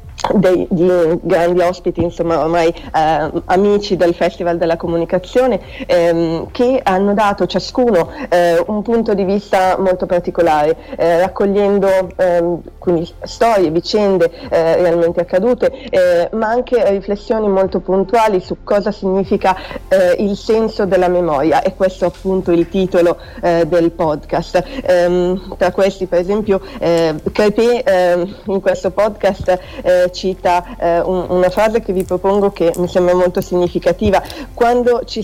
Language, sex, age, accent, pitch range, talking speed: Italian, female, 30-49, native, 175-200 Hz, 135 wpm